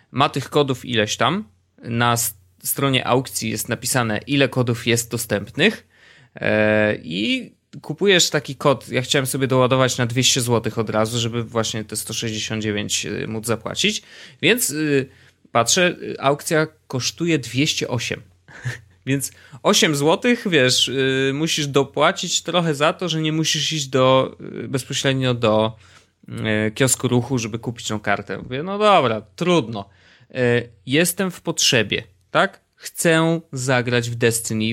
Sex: male